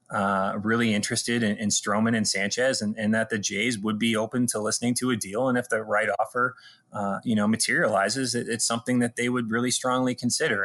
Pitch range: 105-120 Hz